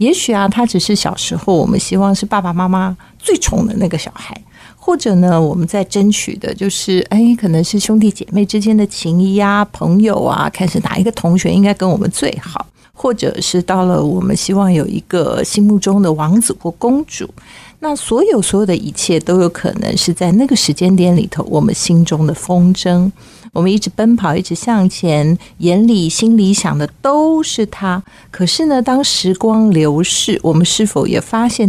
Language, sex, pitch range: Chinese, female, 175-215 Hz